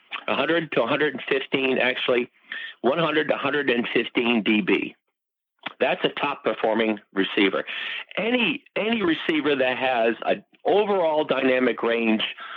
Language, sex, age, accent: English, male, 50-69, American